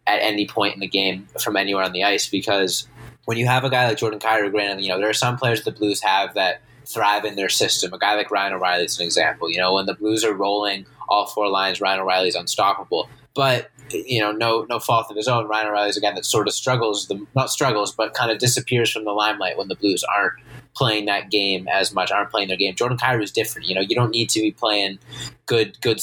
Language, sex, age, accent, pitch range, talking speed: English, male, 20-39, American, 100-120 Hz, 255 wpm